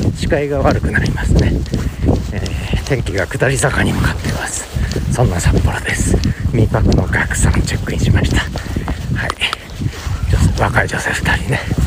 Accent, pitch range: native, 95-125 Hz